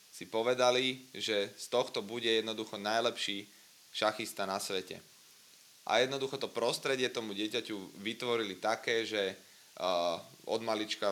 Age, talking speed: 30-49, 125 wpm